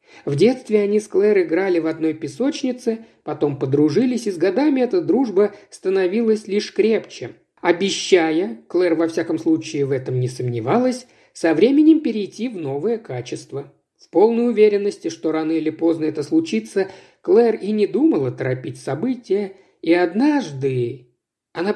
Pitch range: 160-240 Hz